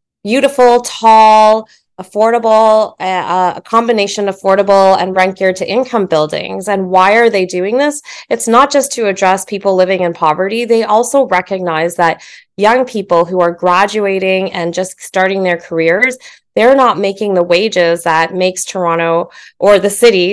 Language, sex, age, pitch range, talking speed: English, female, 20-39, 175-215 Hz, 155 wpm